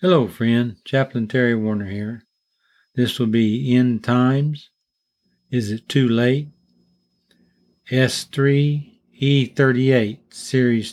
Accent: American